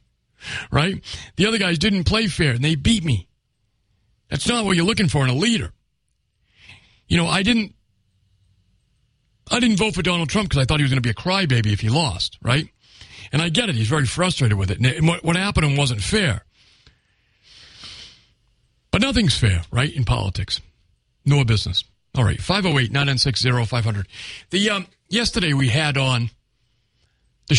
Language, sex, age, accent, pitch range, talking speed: English, male, 50-69, American, 110-170 Hz, 175 wpm